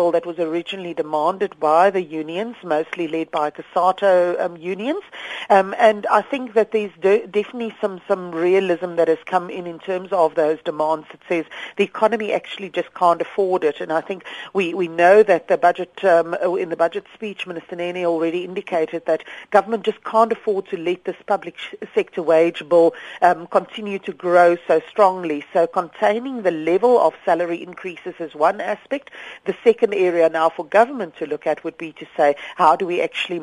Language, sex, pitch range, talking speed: English, female, 160-195 Hz, 185 wpm